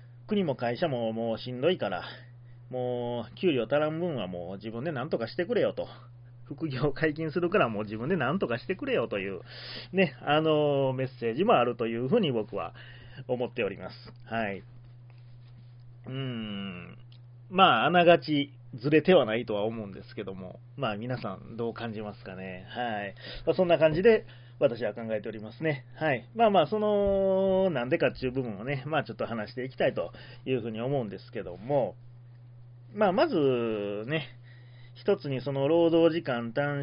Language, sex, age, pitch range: Japanese, male, 30-49, 115-155 Hz